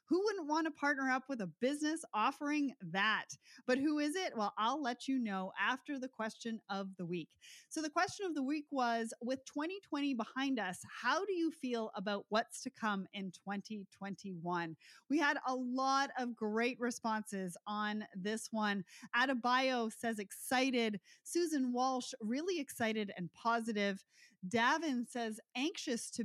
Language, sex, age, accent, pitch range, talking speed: English, female, 30-49, American, 200-265 Hz, 160 wpm